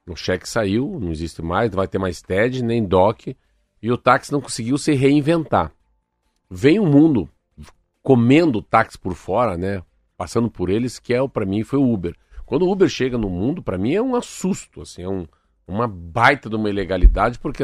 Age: 50-69